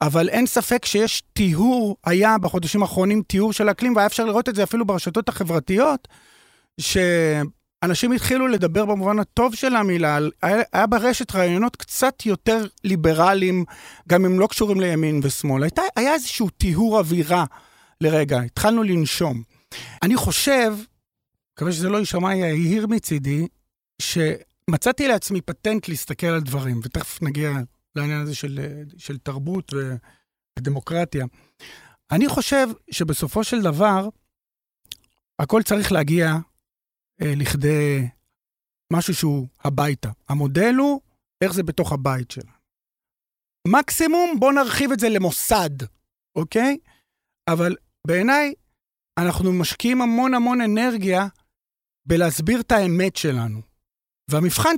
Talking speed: 105 wpm